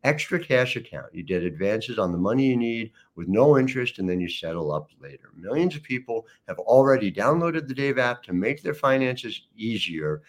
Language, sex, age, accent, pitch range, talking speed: English, male, 50-69, American, 90-130 Hz, 200 wpm